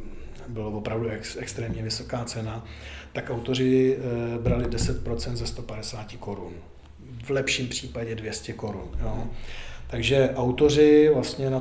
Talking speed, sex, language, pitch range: 115 wpm, male, Czech, 110-130 Hz